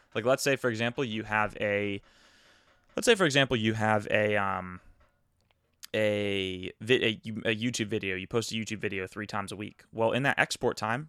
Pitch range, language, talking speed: 105-120 Hz, English, 185 wpm